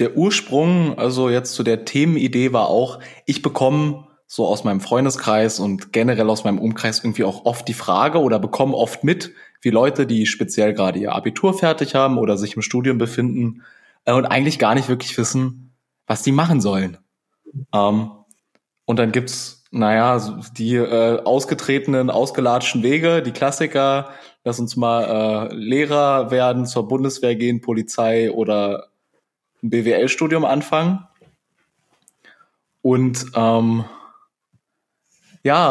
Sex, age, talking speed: male, 20-39, 135 wpm